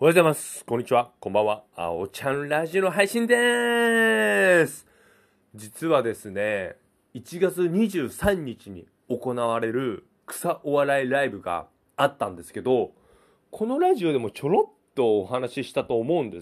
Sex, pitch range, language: male, 120-175 Hz, Japanese